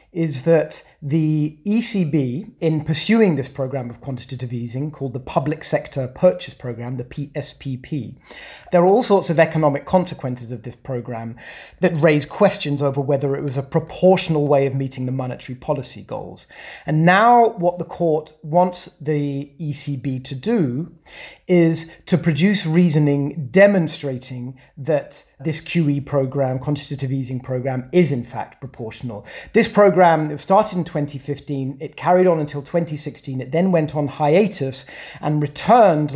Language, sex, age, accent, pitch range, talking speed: English, male, 30-49, British, 135-165 Hz, 145 wpm